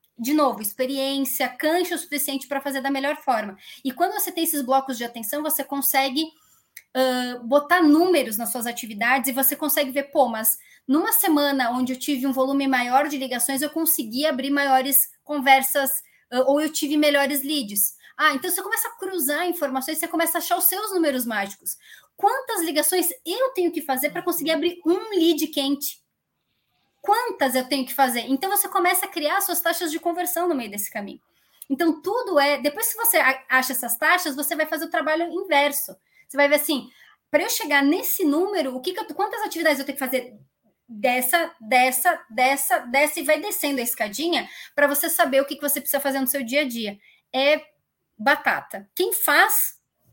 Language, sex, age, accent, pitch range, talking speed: Portuguese, female, 20-39, Brazilian, 270-340 Hz, 190 wpm